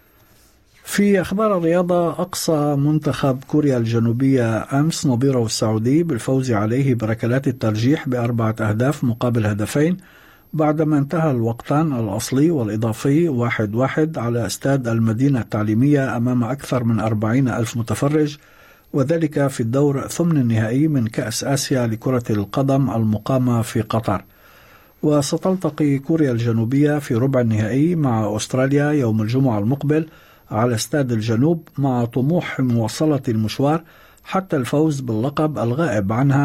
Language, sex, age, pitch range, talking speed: Arabic, male, 50-69, 115-150 Hz, 115 wpm